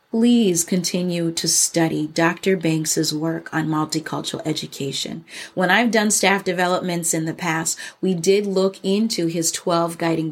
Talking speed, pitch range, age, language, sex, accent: 145 wpm, 165-215 Hz, 30-49, English, female, American